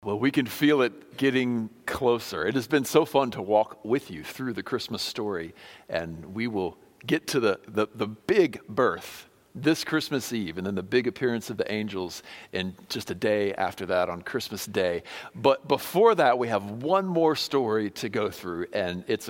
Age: 50-69